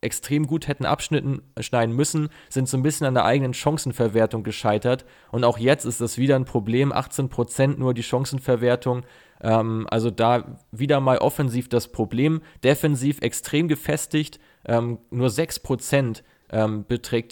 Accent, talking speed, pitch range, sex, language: German, 150 wpm, 120-145 Hz, male, German